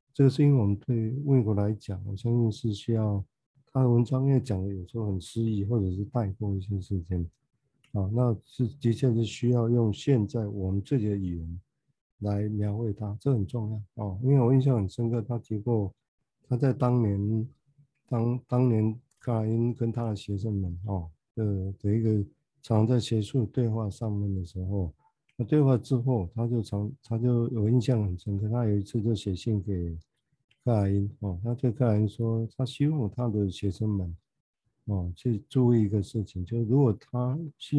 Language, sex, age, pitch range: Chinese, male, 50-69, 100-125 Hz